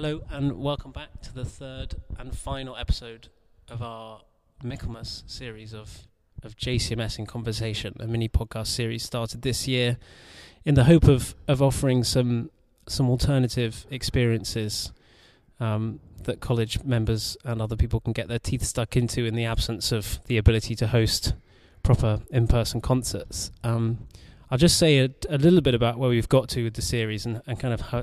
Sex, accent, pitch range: male, British, 110-125 Hz